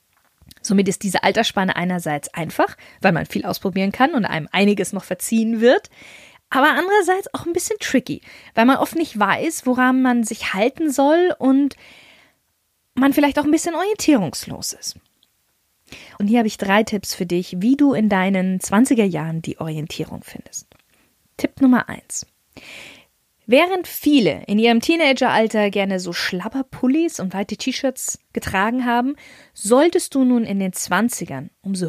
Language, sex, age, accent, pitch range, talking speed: German, female, 20-39, German, 190-265 Hz, 155 wpm